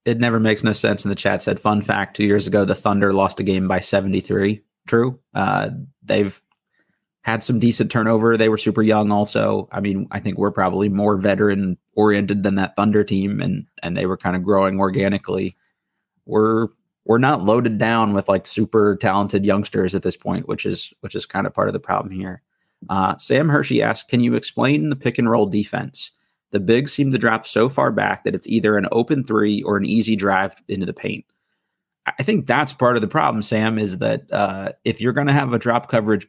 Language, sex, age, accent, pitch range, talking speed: English, male, 20-39, American, 100-115 Hz, 215 wpm